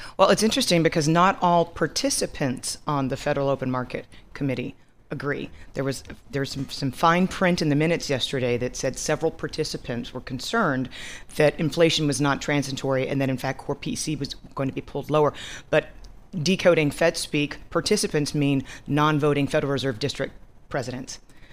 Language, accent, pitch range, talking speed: English, American, 140-180 Hz, 165 wpm